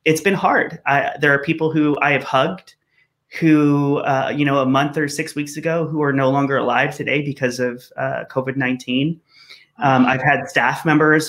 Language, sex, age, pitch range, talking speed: English, male, 30-49, 135-155 Hz, 195 wpm